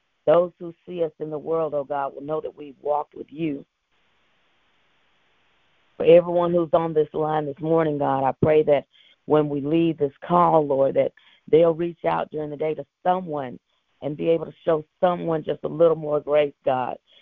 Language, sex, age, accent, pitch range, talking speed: English, female, 40-59, American, 145-165 Hz, 190 wpm